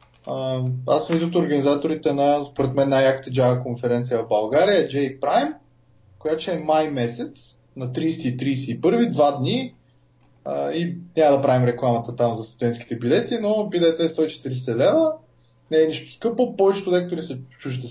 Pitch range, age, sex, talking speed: 120-175 Hz, 20-39, male, 145 wpm